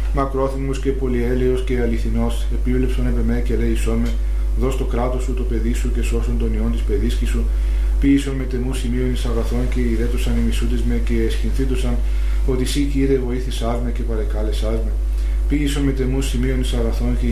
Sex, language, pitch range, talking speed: male, Greek, 115-125 Hz, 175 wpm